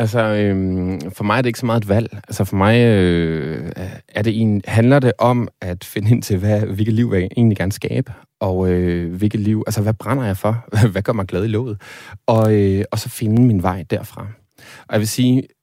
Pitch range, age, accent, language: 95-115 Hz, 30-49, native, Danish